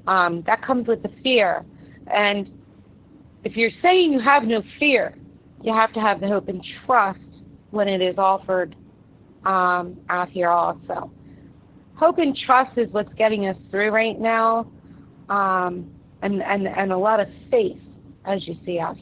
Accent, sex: American, female